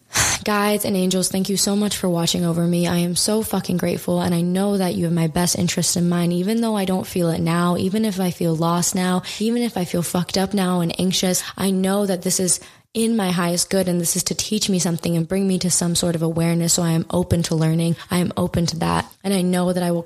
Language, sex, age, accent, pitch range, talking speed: English, female, 20-39, American, 170-200 Hz, 270 wpm